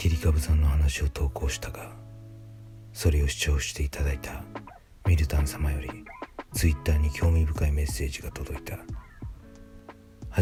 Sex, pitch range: male, 75-85 Hz